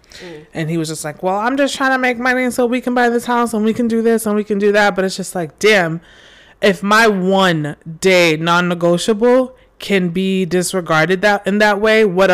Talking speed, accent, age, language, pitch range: 225 wpm, American, 20-39, English, 175-215 Hz